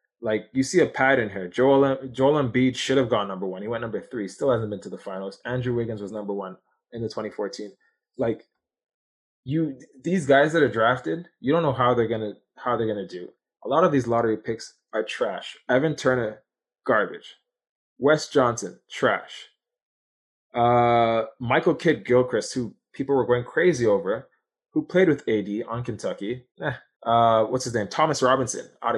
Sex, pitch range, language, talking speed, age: male, 115-155 Hz, English, 180 wpm, 20-39